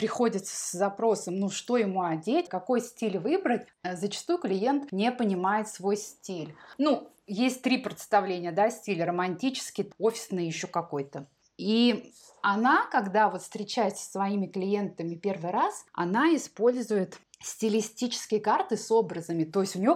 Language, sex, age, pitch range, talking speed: Russian, female, 20-39, 180-225 Hz, 135 wpm